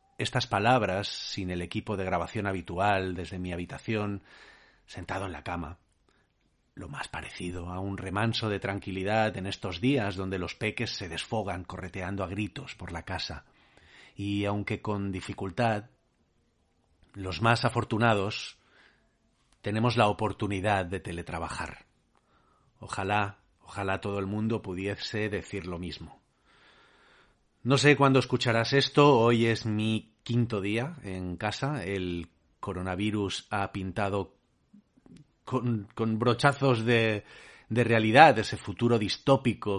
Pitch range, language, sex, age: 95-115 Hz, Spanish, male, 40-59